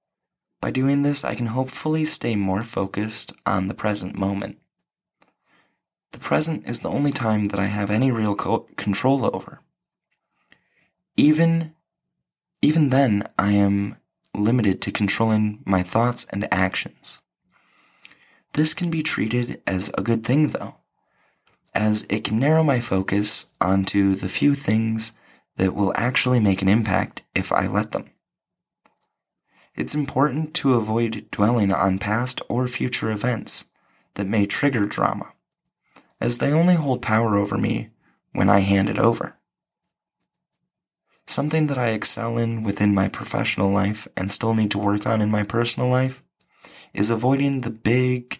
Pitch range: 100-130 Hz